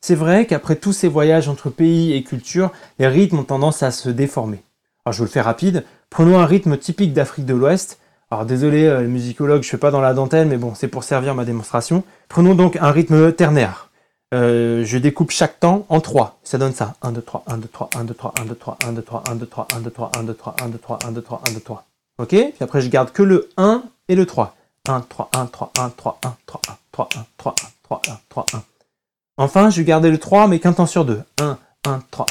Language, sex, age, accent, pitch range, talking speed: French, male, 30-49, French, 120-155 Hz, 255 wpm